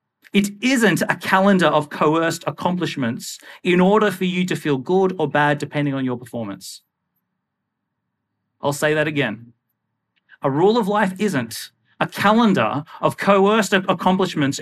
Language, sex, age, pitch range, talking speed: English, male, 40-59, 145-190 Hz, 140 wpm